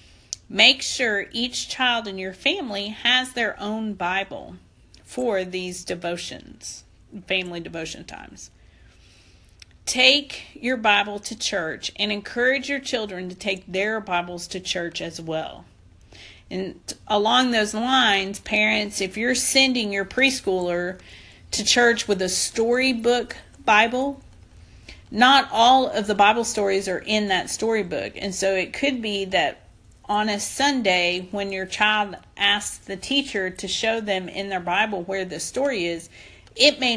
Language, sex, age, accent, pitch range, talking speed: English, female, 40-59, American, 175-230 Hz, 140 wpm